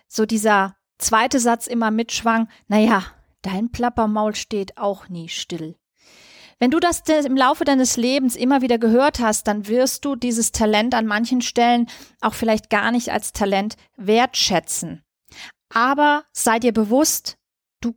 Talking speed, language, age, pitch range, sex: 145 wpm, German, 30-49, 215-260 Hz, female